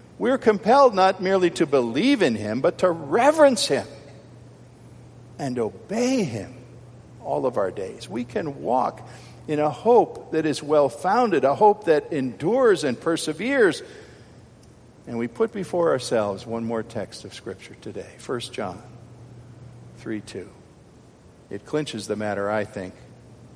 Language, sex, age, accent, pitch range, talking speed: English, male, 50-69, American, 115-150 Hz, 140 wpm